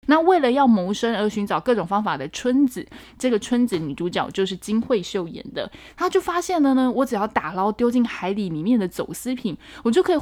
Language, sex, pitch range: Chinese, female, 185-240 Hz